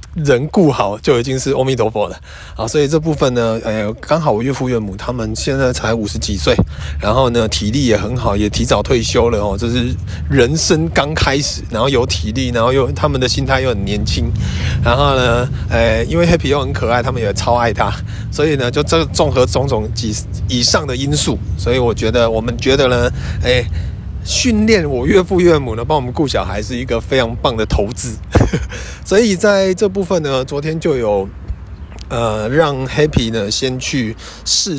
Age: 30-49